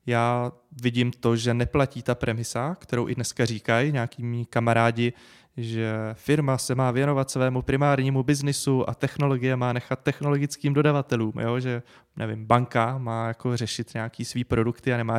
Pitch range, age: 115-130 Hz, 20-39